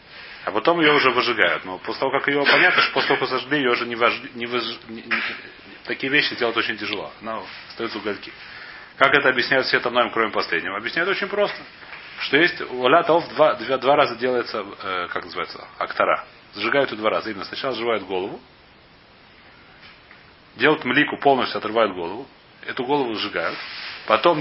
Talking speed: 175 wpm